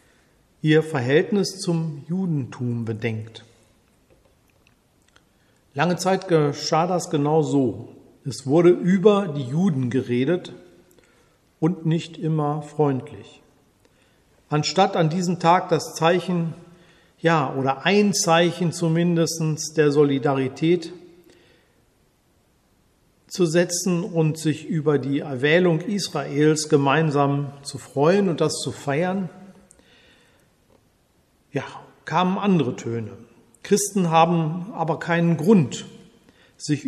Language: German